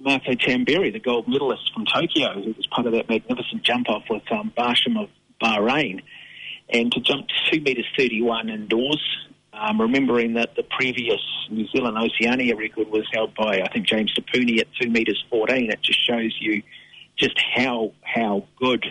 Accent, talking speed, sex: Australian, 170 wpm, male